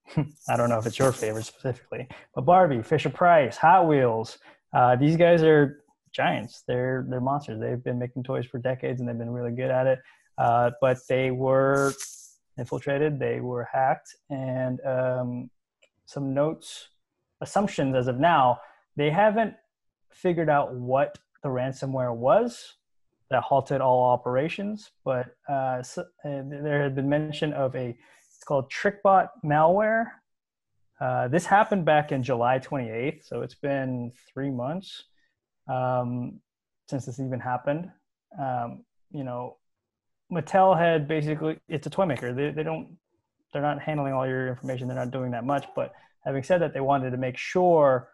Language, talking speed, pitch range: English, 155 wpm, 125-155 Hz